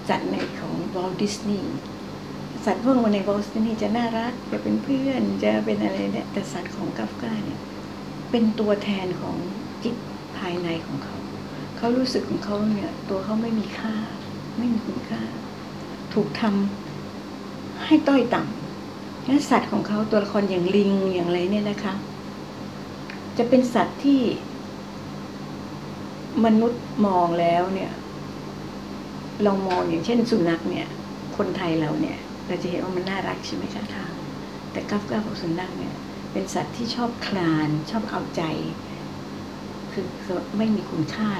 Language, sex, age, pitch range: Thai, female, 60-79, 155-225 Hz